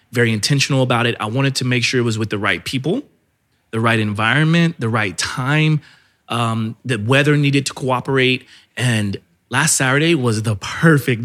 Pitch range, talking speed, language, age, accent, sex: 110-140 Hz, 175 wpm, English, 30-49, American, male